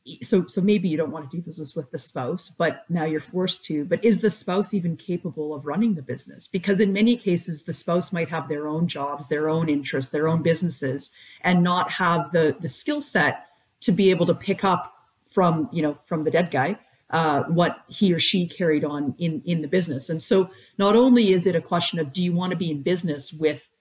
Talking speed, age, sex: 230 wpm, 40-59, female